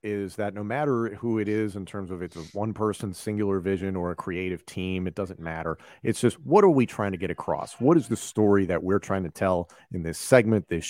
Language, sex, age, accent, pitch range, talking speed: English, male, 40-59, American, 95-110 Hz, 250 wpm